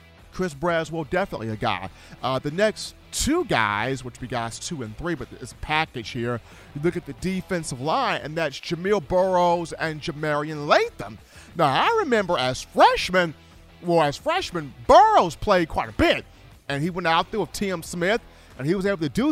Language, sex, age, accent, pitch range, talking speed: English, male, 40-59, American, 140-200 Hz, 195 wpm